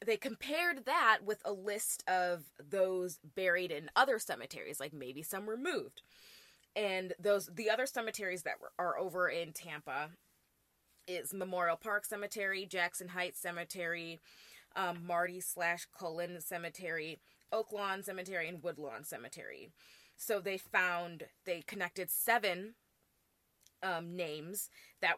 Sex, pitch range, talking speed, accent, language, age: female, 170-215 Hz, 125 wpm, American, English, 20-39